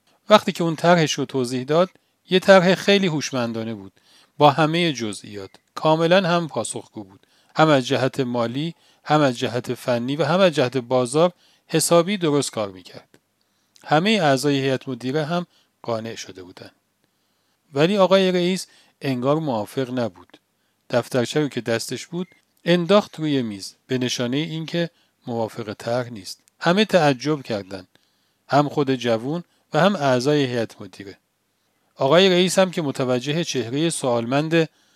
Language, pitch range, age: Persian, 125-170 Hz, 40-59